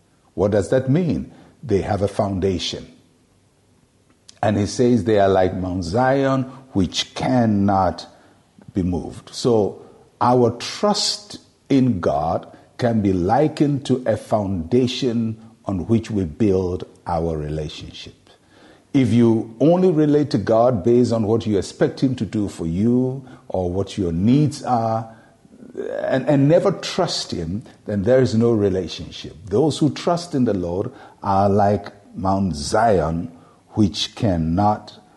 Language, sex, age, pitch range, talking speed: English, male, 60-79, 100-135 Hz, 135 wpm